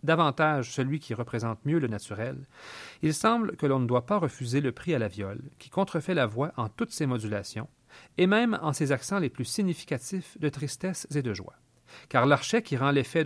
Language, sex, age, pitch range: French, male, 40-59, 120-165 Hz